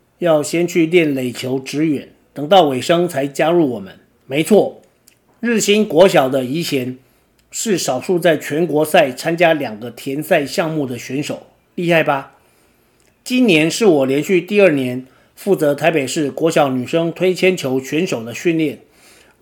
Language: Chinese